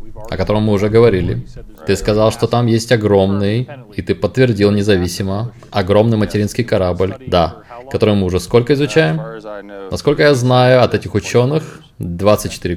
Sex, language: male, Russian